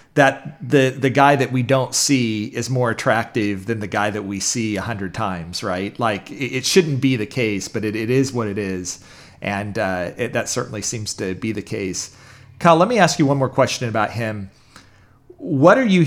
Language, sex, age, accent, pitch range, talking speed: English, male, 40-59, American, 110-140 Hz, 215 wpm